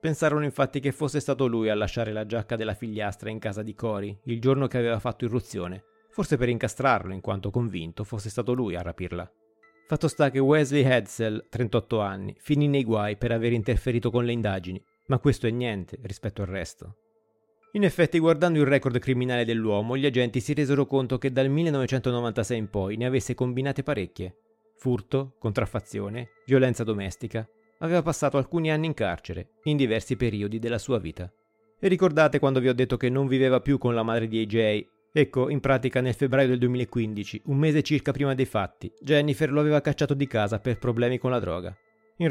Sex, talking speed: male, 190 wpm